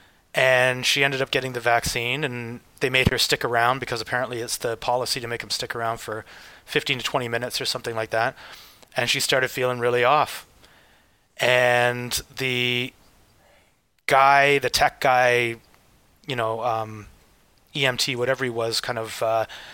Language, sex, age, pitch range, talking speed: English, male, 30-49, 115-130 Hz, 165 wpm